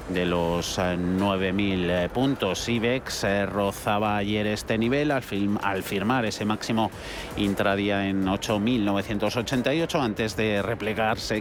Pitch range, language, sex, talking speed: 100-125 Hz, Spanish, male, 110 wpm